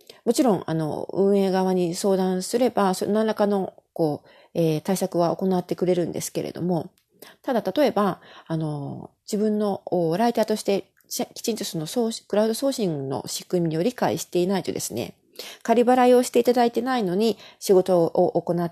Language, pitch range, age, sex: Japanese, 165-210 Hz, 40-59, female